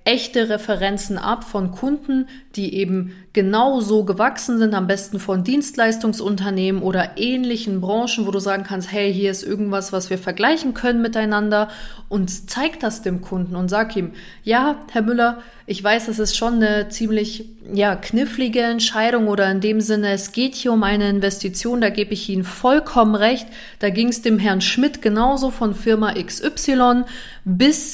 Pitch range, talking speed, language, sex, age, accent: 200-235 Hz, 170 wpm, German, female, 30-49, German